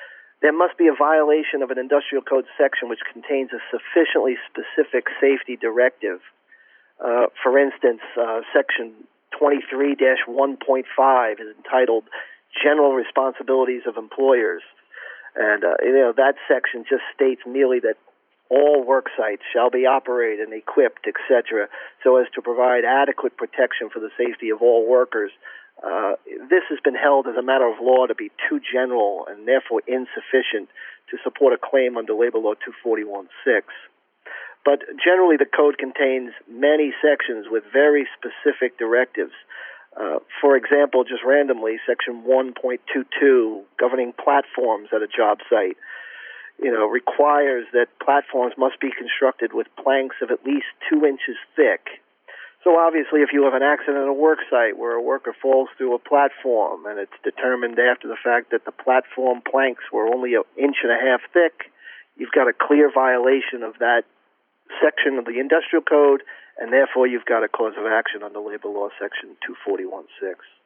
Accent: American